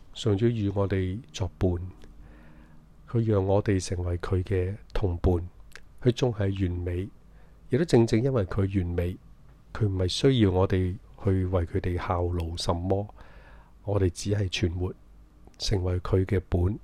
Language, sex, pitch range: Chinese, male, 90-105 Hz